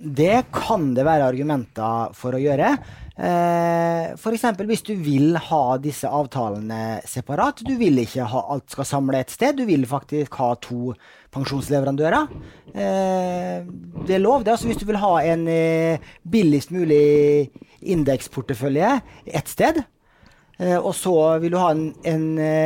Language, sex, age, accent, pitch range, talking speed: English, male, 30-49, Norwegian, 130-170 Hz, 150 wpm